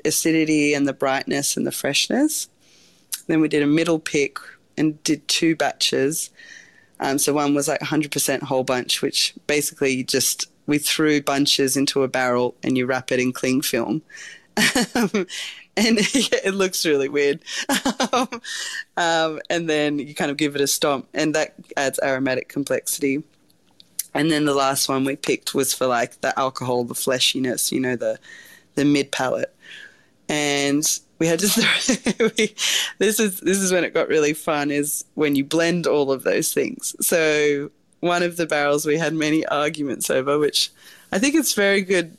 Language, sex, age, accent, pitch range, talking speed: English, female, 20-39, Australian, 140-185 Hz, 170 wpm